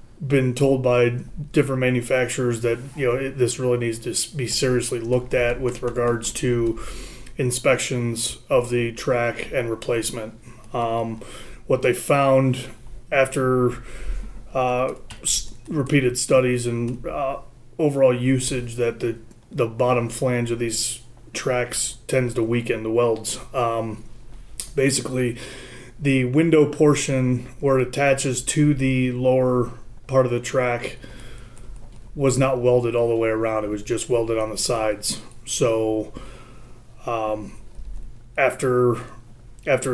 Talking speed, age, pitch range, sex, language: 125 wpm, 30-49, 115-130 Hz, male, English